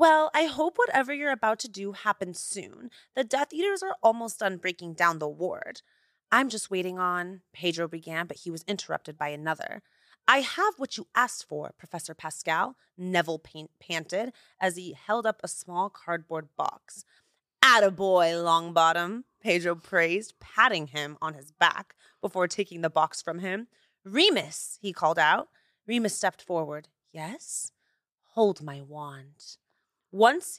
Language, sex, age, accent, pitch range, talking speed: English, female, 30-49, American, 170-240 Hz, 155 wpm